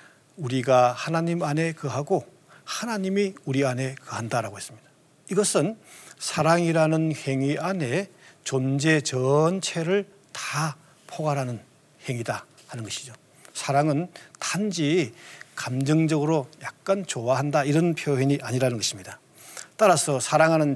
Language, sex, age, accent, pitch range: Korean, male, 40-59, native, 130-165 Hz